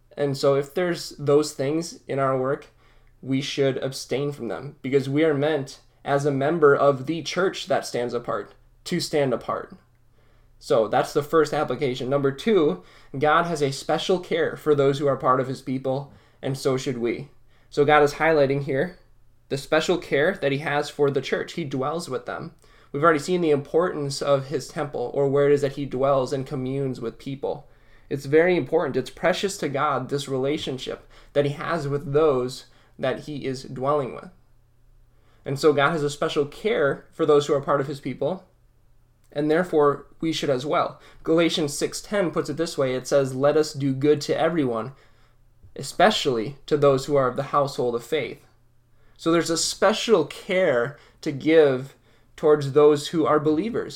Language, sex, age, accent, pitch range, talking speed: English, male, 10-29, American, 130-150 Hz, 185 wpm